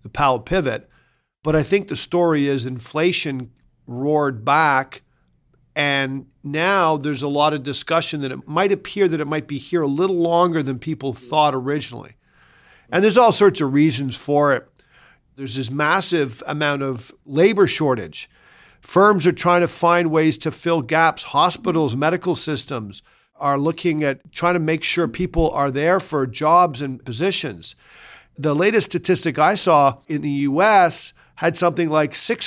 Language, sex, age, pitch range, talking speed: English, male, 50-69, 140-175 Hz, 165 wpm